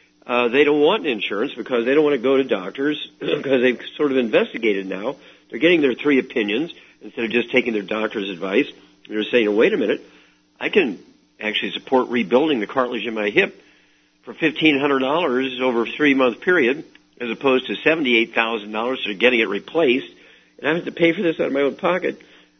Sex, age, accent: male, 50-69, American